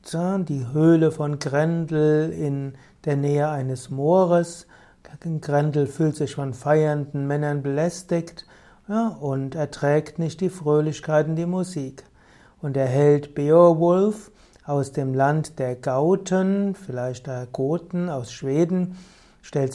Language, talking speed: German, 120 wpm